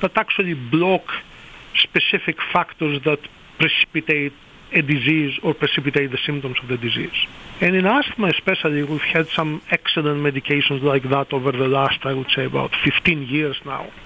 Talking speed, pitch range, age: 160 wpm, 140-160 Hz, 50-69